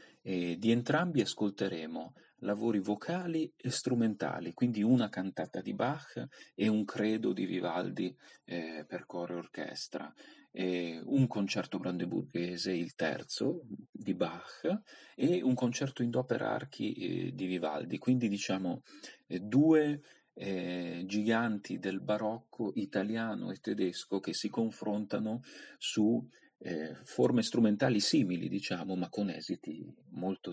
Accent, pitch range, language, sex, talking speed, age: native, 95-125 Hz, Italian, male, 120 wpm, 40-59